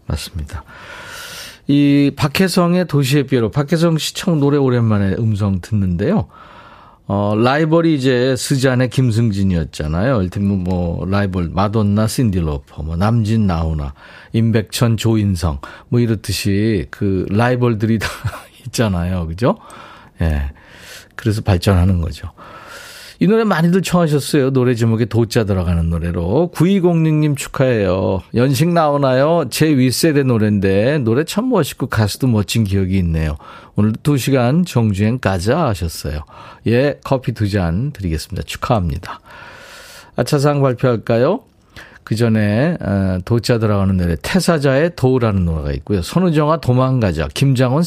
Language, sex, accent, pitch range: Korean, male, native, 100-145 Hz